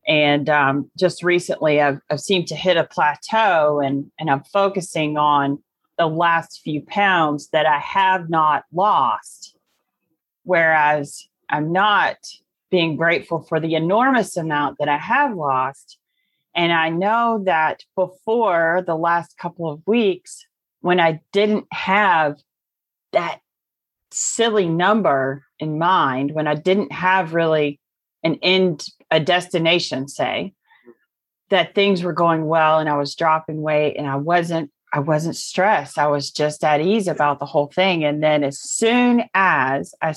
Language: English